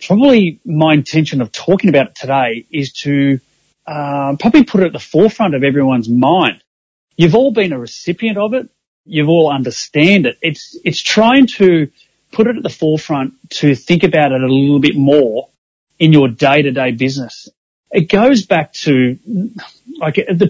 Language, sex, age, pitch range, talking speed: English, male, 30-49, 140-185 Hz, 170 wpm